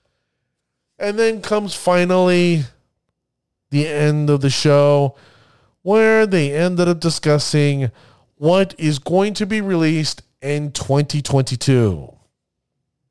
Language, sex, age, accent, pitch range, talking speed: English, male, 40-59, American, 130-175 Hz, 100 wpm